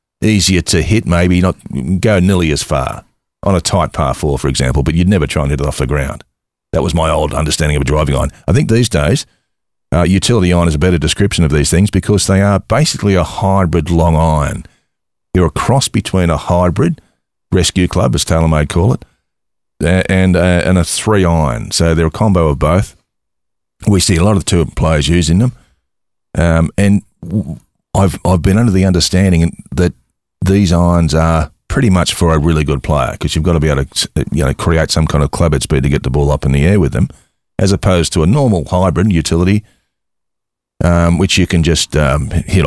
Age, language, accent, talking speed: 40-59, English, Australian, 210 wpm